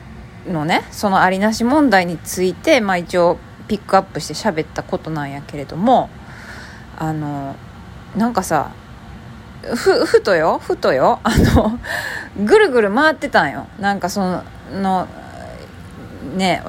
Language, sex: Japanese, female